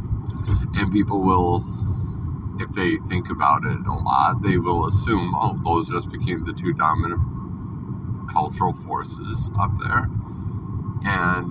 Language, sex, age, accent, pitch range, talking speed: English, male, 50-69, American, 95-110 Hz, 130 wpm